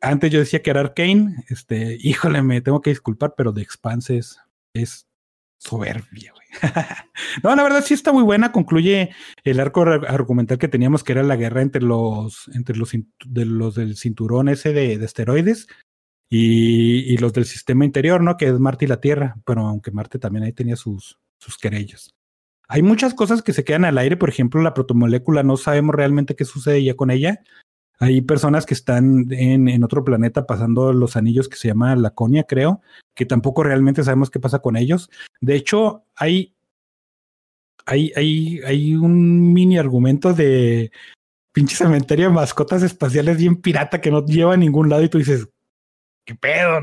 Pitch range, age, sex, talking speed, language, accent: 120-160 Hz, 40-59, male, 180 wpm, Spanish, Mexican